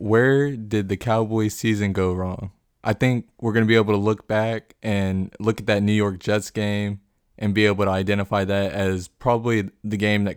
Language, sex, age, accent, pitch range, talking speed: English, male, 20-39, American, 100-115 Hz, 210 wpm